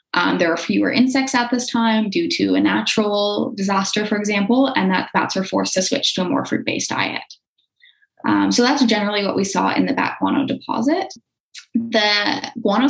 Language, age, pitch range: English, 10-29, 185-275 Hz